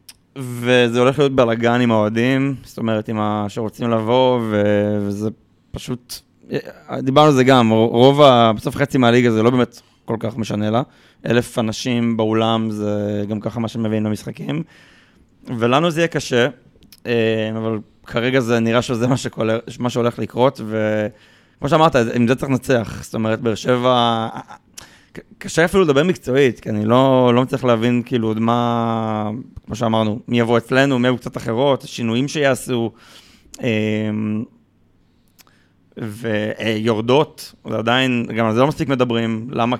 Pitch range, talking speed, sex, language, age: 110-125 Hz, 145 wpm, male, Hebrew, 20-39